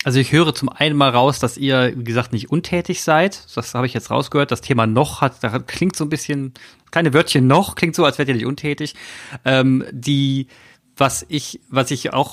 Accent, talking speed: German, 220 wpm